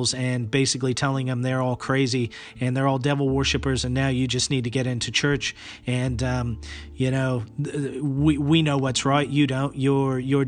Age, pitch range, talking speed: 30-49, 125-145 Hz, 195 wpm